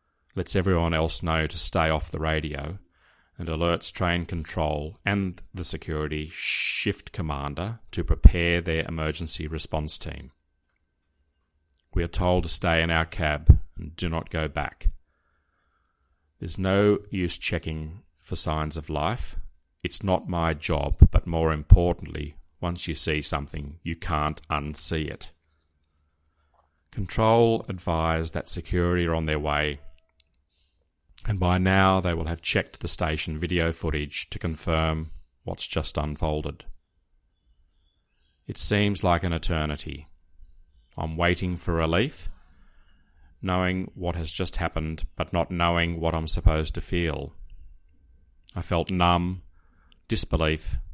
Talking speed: 130 wpm